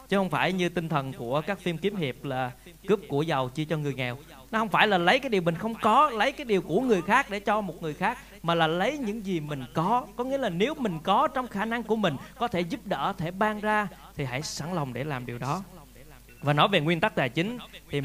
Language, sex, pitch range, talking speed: Vietnamese, male, 145-200 Hz, 270 wpm